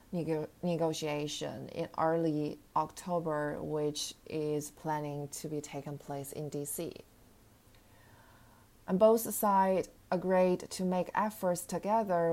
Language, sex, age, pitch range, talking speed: English, female, 20-39, 155-185 Hz, 100 wpm